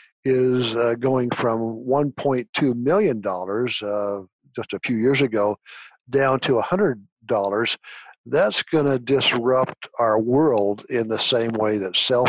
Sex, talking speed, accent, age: male, 130 wpm, American, 60-79